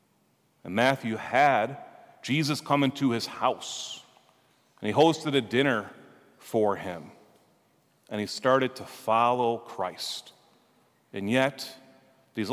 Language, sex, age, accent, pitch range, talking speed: English, male, 40-59, American, 120-155 Hz, 115 wpm